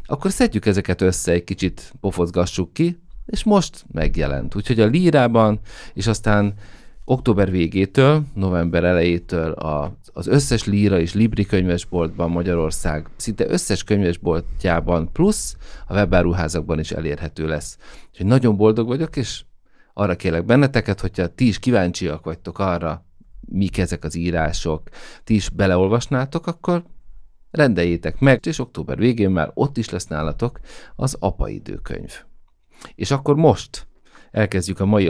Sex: male